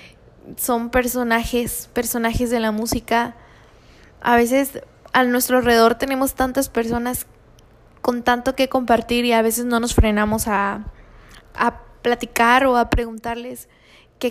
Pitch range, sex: 225-255 Hz, female